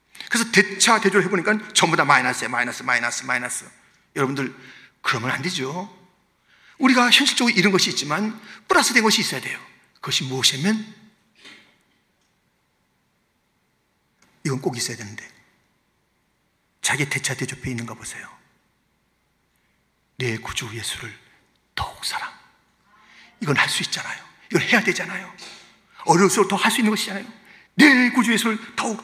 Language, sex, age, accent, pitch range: Korean, male, 40-59, native, 180-260 Hz